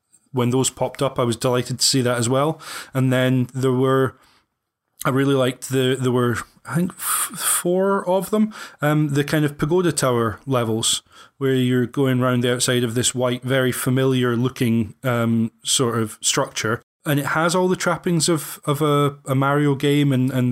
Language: English